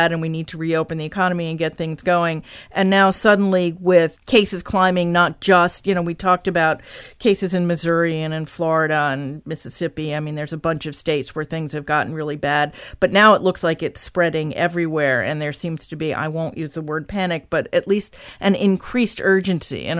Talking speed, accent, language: 215 wpm, American, English